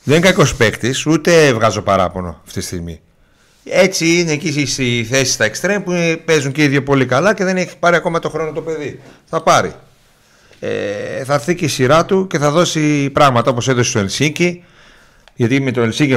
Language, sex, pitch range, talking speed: Greek, male, 100-140 Hz, 195 wpm